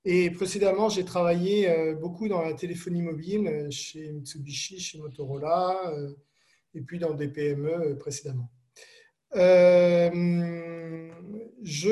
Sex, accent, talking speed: male, French, 105 wpm